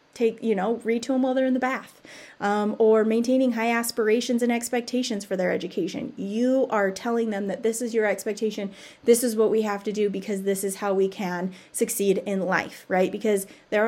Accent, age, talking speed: American, 30-49, 210 wpm